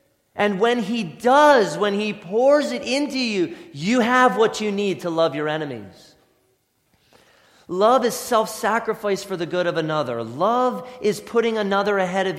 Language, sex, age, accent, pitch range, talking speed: English, male, 30-49, American, 175-245 Hz, 160 wpm